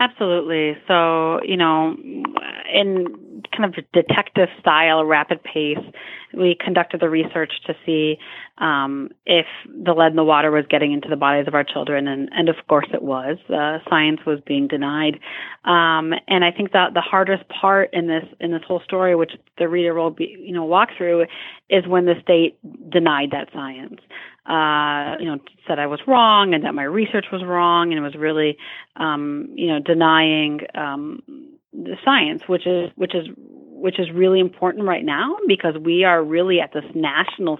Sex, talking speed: female, 180 wpm